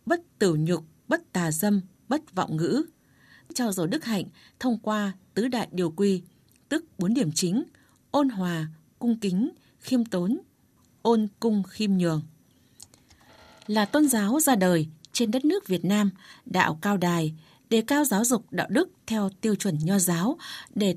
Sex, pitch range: female, 180-240 Hz